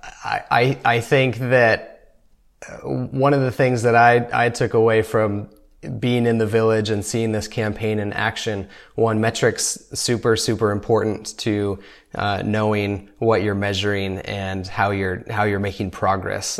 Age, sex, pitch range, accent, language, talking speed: 20-39, male, 100-115 Hz, American, English, 150 wpm